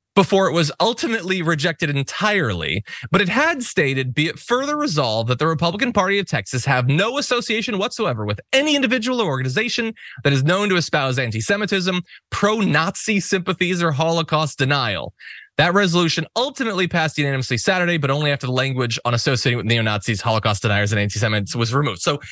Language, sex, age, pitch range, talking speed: English, male, 20-39, 130-200 Hz, 165 wpm